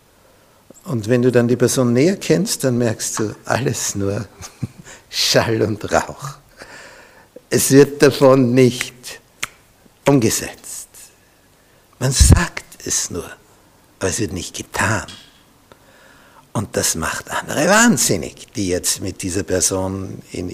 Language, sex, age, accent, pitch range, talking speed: German, male, 60-79, Austrian, 100-135 Hz, 120 wpm